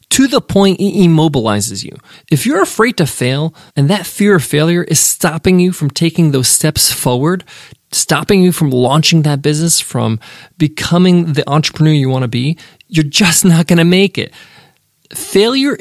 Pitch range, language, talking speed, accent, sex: 150-195 Hz, English, 175 wpm, American, male